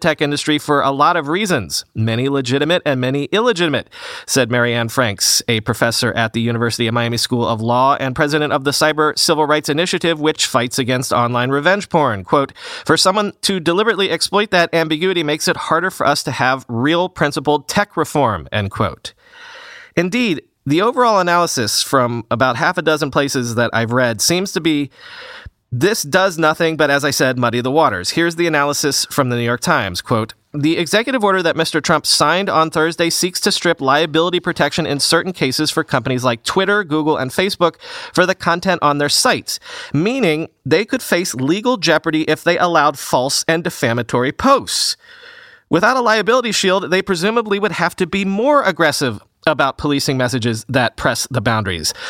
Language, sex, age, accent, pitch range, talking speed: English, male, 30-49, American, 130-180 Hz, 180 wpm